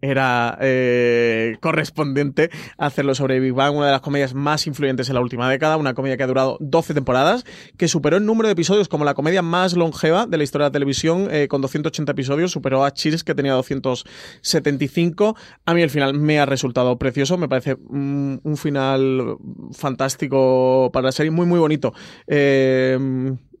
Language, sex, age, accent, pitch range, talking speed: Spanish, male, 20-39, Spanish, 135-155 Hz, 185 wpm